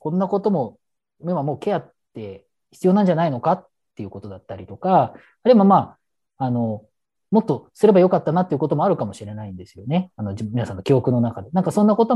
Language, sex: Japanese, male